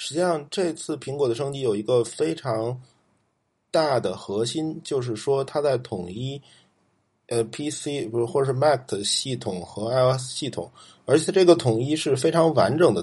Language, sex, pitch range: Chinese, male, 120-165 Hz